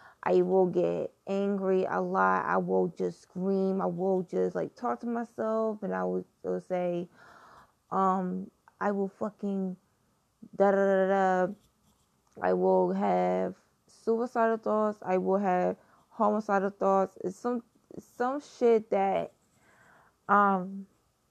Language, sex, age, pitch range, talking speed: English, female, 20-39, 185-205 Hz, 130 wpm